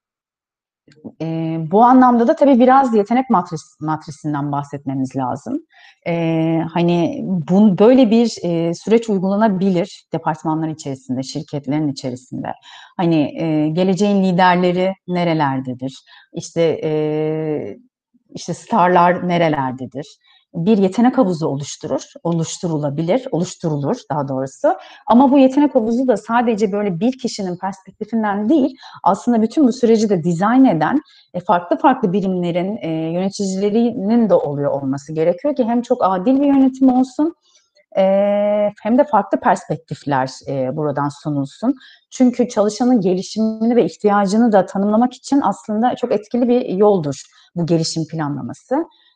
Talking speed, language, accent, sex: 120 wpm, Turkish, native, female